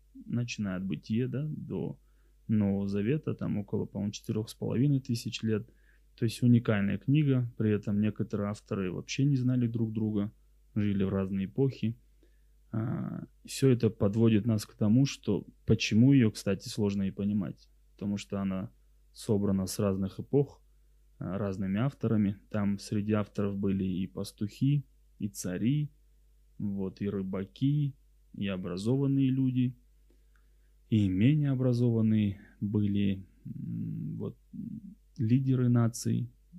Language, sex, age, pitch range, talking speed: Russian, male, 20-39, 100-125 Hz, 120 wpm